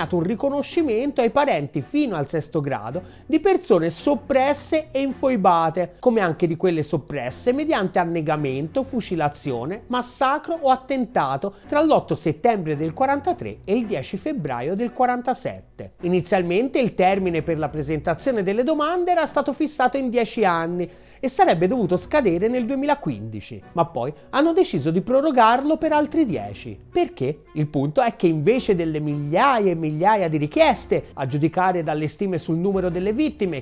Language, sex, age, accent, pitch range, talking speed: Italian, male, 30-49, native, 165-270 Hz, 150 wpm